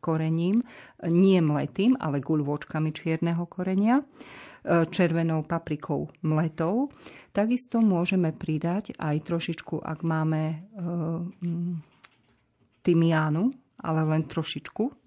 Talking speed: 90 wpm